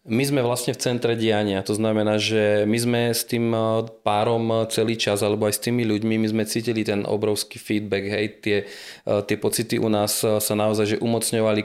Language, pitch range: Slovak, 105-115 Hz